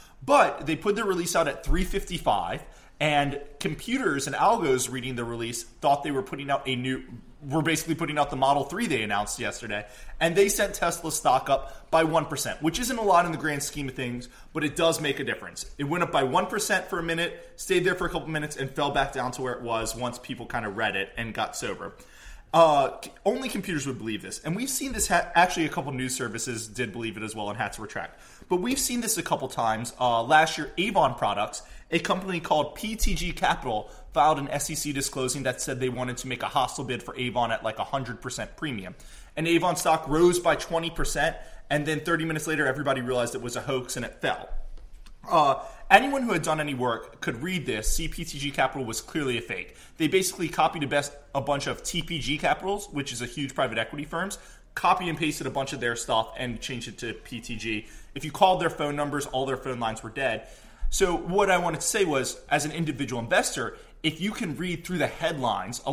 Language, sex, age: English, male, 20-39